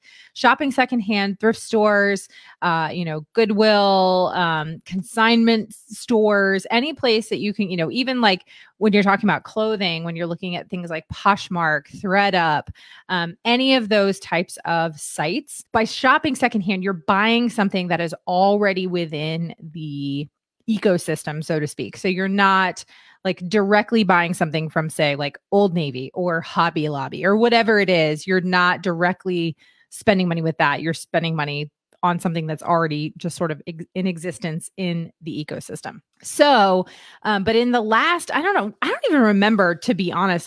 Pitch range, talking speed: 170-210 Hz, 170 wpm